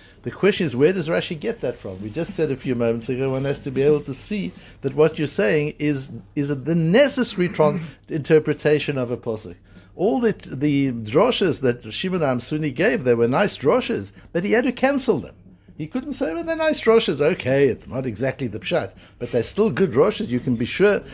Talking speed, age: 215 wpm, 60-79